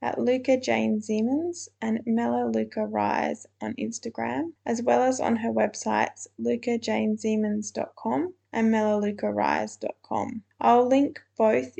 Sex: female